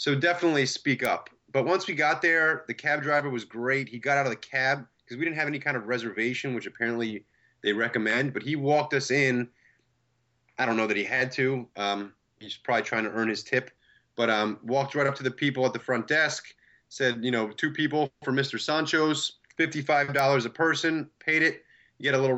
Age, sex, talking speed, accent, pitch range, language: 30-49, male, 215 wpm, American, 120-150 Hz, English